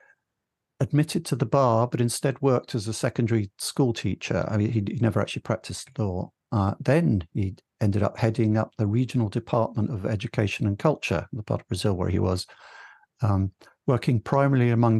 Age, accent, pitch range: 60-79, British, 105-130 Hz